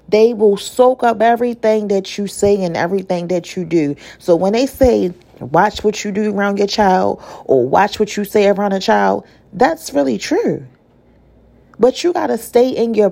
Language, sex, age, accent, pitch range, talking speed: English, female, 40-59, American, 180-240 Hz, 190 wpm